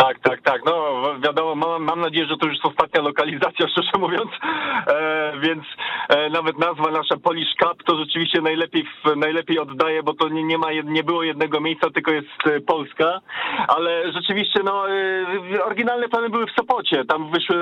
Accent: native